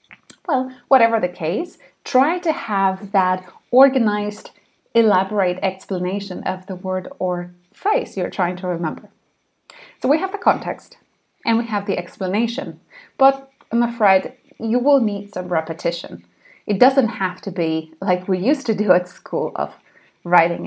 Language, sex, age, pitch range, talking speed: English, female, 30-49, 185-255 Hz, 150 wpm